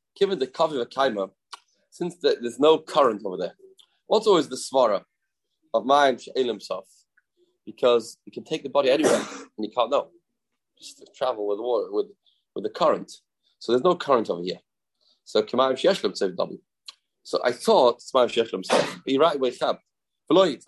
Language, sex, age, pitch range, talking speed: English, male, 30-49, 125-195 Hz, 140 wpm